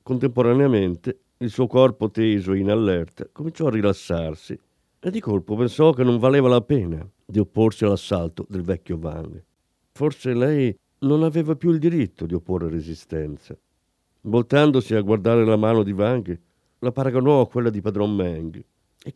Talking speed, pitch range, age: 160 wpm, 90-130 Hz, 50-69